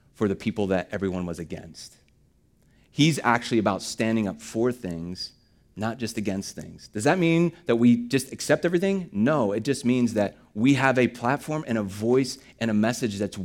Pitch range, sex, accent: 105-130 Hz, male, American